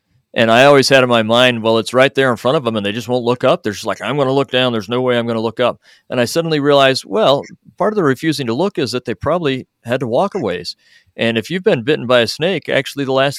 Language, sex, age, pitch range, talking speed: English, male, 40-59, 115-140 Hz, 300 wpm